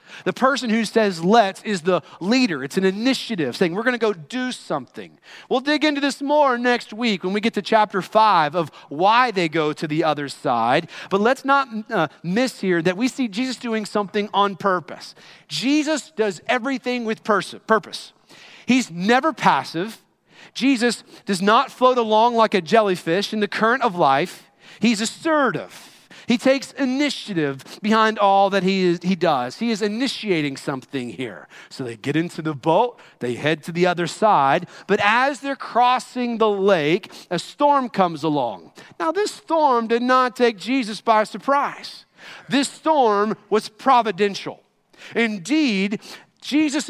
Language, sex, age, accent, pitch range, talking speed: English, male, 40-59, American, 185-255 Hz, 165 wpm